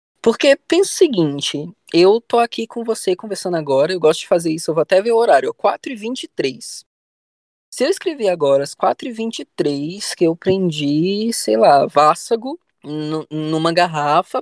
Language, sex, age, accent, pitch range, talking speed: Portuguese, female, 20-39, Brazilian, 155-230 Hz, 160 wpm